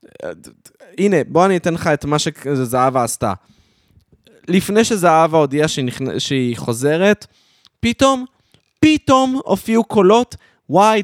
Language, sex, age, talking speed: Hebrew, male, 20-39, 110 wpm